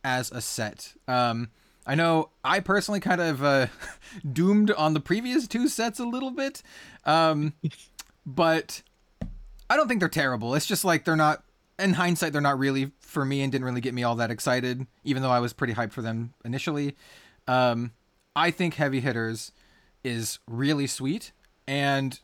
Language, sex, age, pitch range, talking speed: English, male, 30-49, 125-160 Hz, 175 wpm